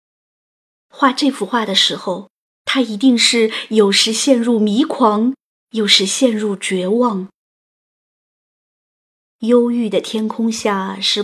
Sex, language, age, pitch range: female, Chinese, 20-39, 205-250 Hz